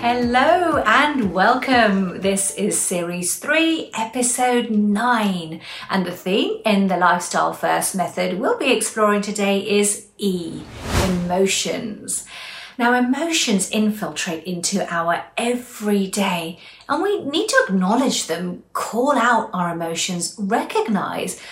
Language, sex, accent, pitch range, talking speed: English, female, British, 185-245 Hz, 115 wpm